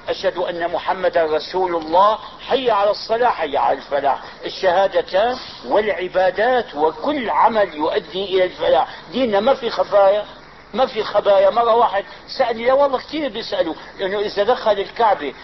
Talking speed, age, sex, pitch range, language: 130 wpm, 50-69, male, 180-225 Hz, Arabic